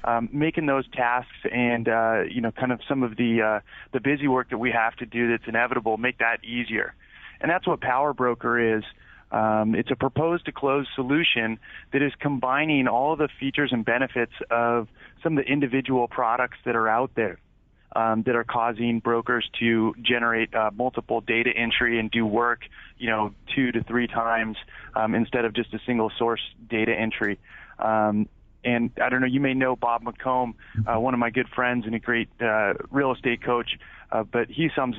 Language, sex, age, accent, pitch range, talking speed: English, male, 30-49, American, 115-125 Hz, 195 wpm